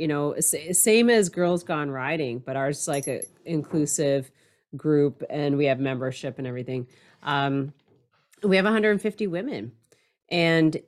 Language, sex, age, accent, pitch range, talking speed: English, female, 30-49, American, 135-200 Hz, 145 wpm